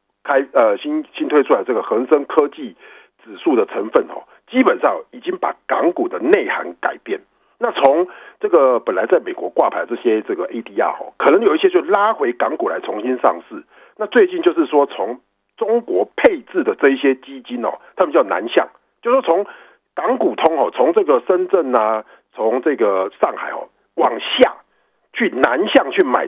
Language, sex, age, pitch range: Chinese, male, 50-69, 320-430 Hz